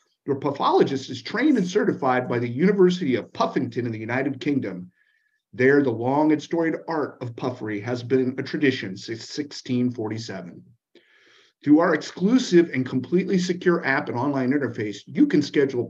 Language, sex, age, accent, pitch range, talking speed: English, male, 50-69, American, 120-175 Hz, 160 wpm